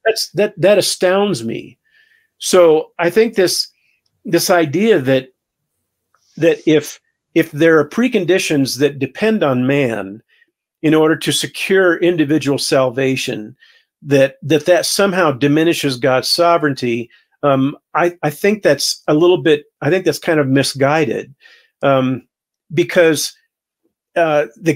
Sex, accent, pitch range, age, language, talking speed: male, American, 140-175 Hz, 50-69, English, 130 wpm